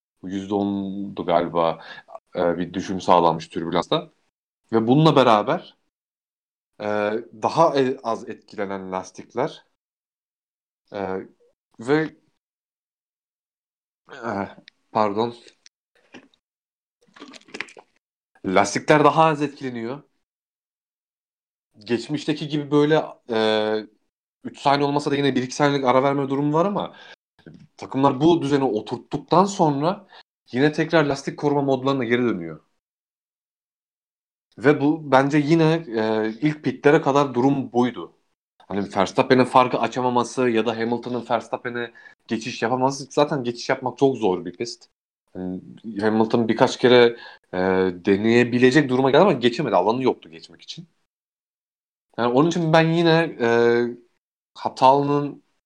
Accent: native